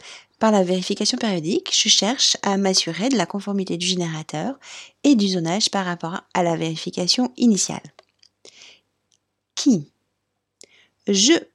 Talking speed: 125 wpm